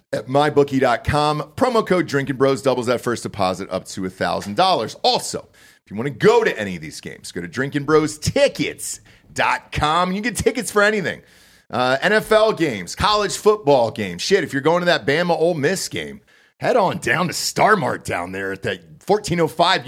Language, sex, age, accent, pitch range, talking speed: English, male, 40-59, American, 120-175 Hz, 190 wpm